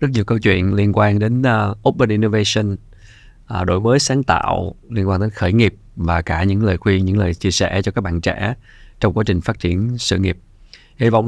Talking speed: 215 wpm